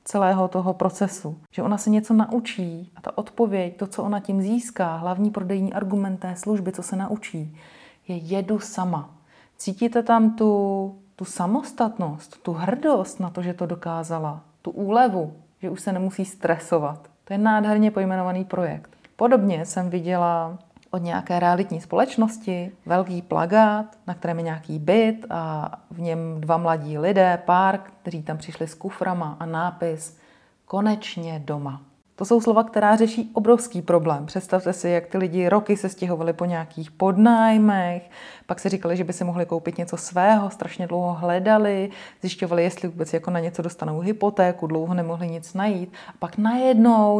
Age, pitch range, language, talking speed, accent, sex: 30-49, 175-210 Hz, Czech, 160 wpm, native, female